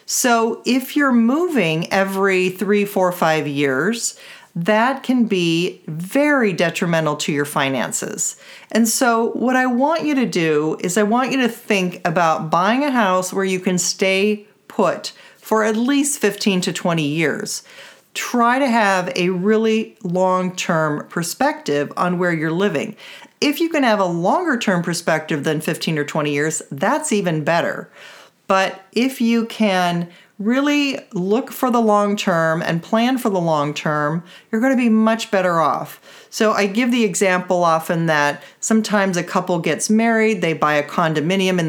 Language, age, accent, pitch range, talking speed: English, 40-59, American, 175-235 Hz, 160 wpm